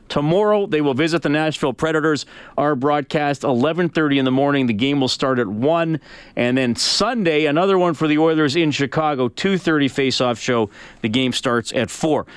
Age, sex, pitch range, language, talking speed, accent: 40-59, male, 130-160 Hz, English, 180 wpm, American